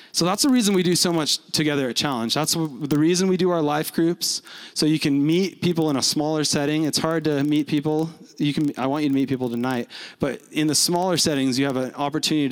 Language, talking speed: English, 245 wpm